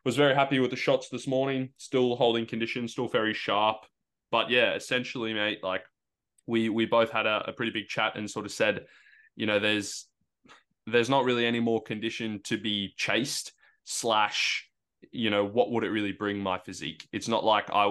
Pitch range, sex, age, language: 100-115 Hz, male, 20-39, English